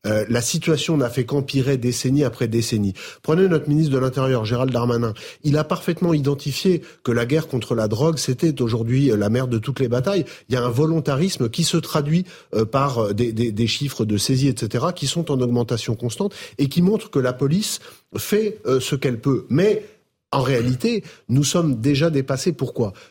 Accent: French